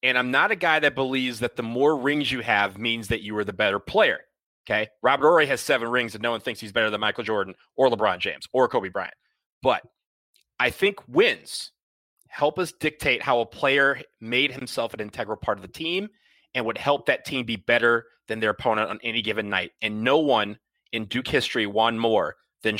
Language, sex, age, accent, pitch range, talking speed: English, male, 30-49, American, 115-155 Hz, 215 wpm